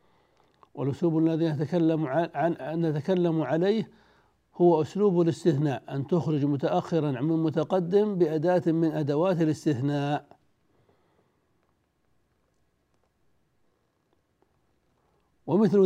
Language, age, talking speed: Arabic, 60-79, 80 wpm